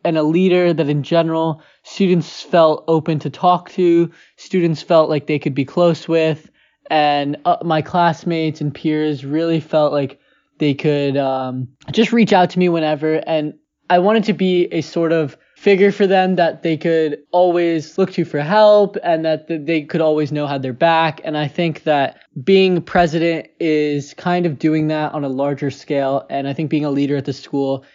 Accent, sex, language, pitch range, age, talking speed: American, male, English, 145-175 Hz, 20-39, 190 wpm